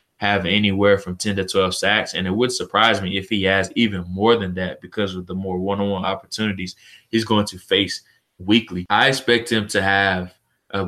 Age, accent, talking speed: 20-39, American, 210 wpm